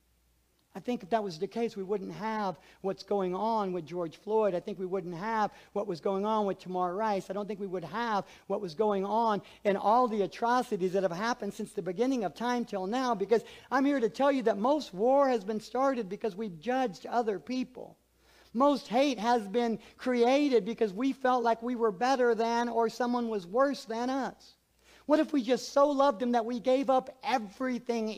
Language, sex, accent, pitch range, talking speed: English, male, American, 195-245 Hz, 215 wpm